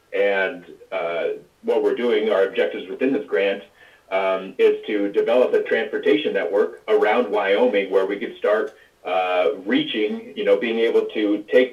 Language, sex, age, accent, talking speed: English, male, 30-49, American, 160 wpm